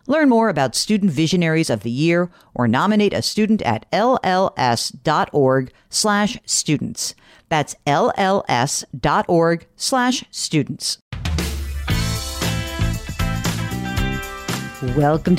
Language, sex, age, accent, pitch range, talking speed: English, female, 50-69, American, 135-210 Hz, 80 wpm